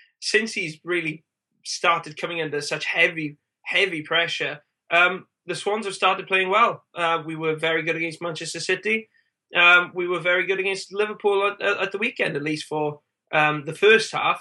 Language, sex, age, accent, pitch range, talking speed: English, male, 20-39, British, 150-175 Hz, 180 wpm